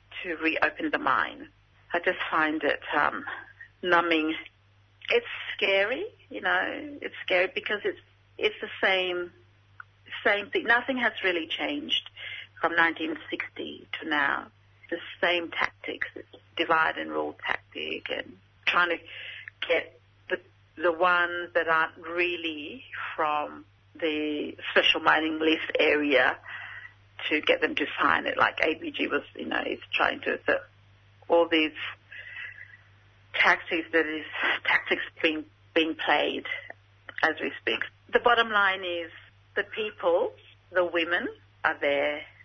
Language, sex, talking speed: English, female, 130 wpm